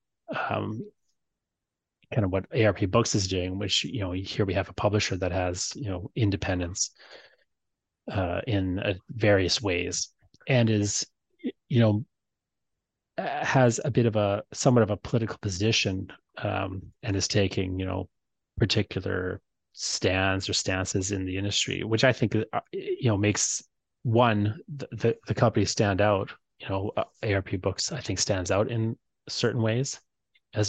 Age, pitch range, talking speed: 30-49, 95-120 Hz, 155 wpm